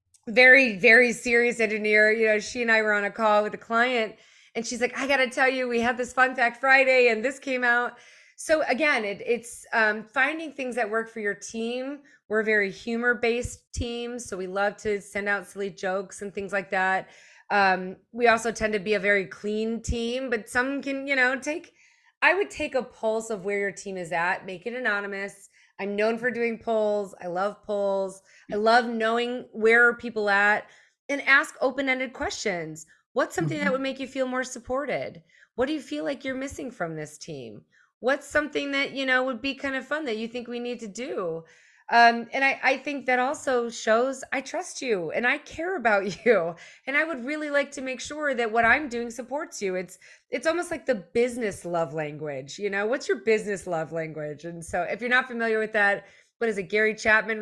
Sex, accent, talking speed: female, American, 215 wpm